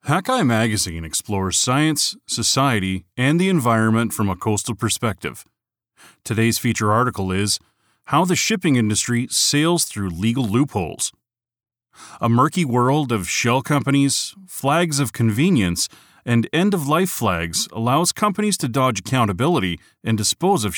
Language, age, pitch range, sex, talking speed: English, 30-49, 105-145 Hz, male, 125 wpm